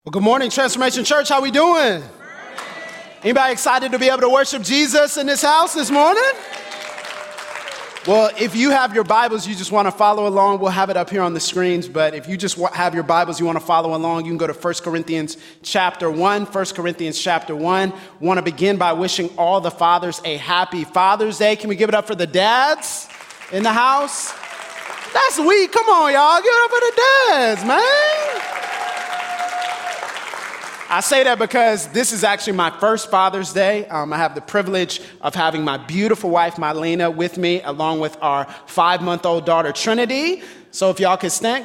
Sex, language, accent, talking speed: male, English, American, 195 wpm